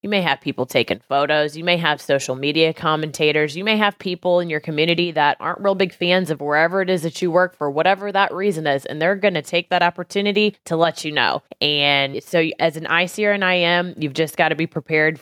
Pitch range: 150-180 Hz